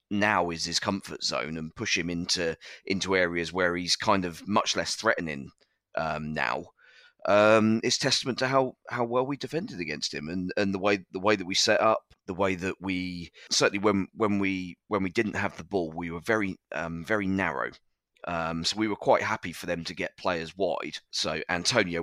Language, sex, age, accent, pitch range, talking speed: English, male, 30-49, British, 85-105 Hz, 205 wpm